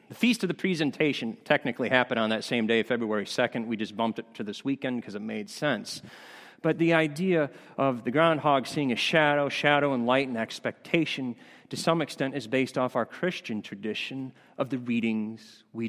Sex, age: male, 40-59